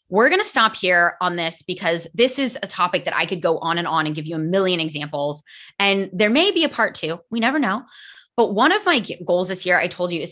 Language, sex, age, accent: English, female, 20-39, American